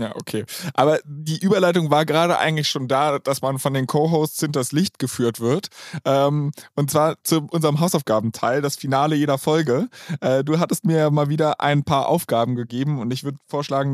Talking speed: 190 wpm